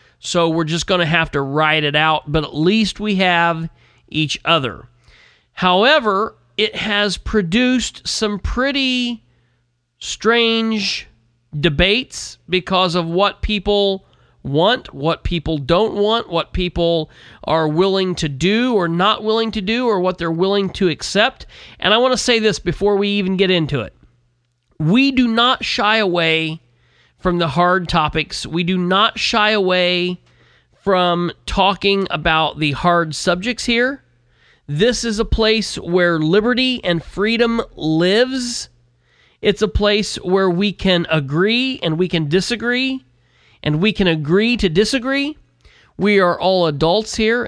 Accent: American